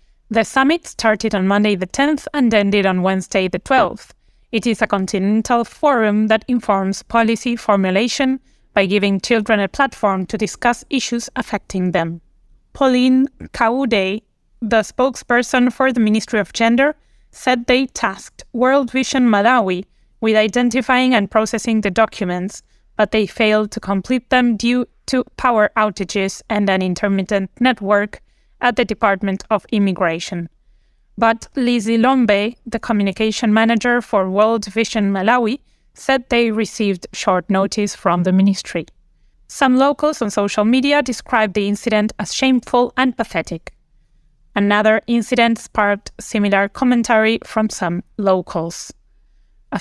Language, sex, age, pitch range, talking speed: English, female, 20-39, 200-245 Hz, 135 wpm